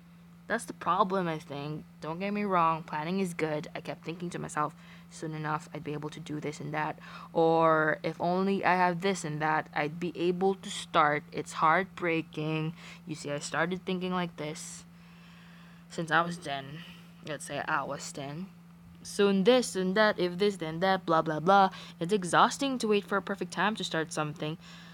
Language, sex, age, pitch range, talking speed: English, female, 20-39, 160-195 Hz, 195 wpm